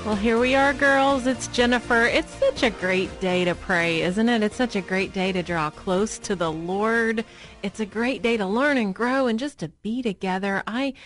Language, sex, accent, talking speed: English, female, American, 220 wpm